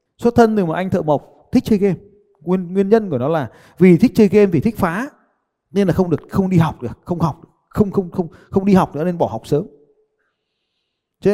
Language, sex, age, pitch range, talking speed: Vietnamese, male, 20-39, 185-245 Hz, 245 wpm